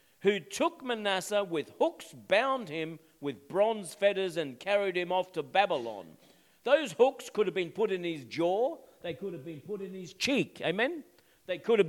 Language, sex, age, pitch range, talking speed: English, male, 50-69, 175-225 Hz, 185 wpm